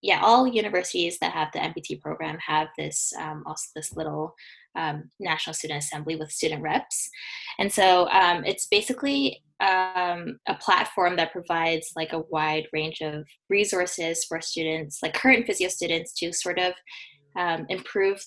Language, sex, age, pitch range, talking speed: English, female, 10-29, 160-210 Hz, 160 wpm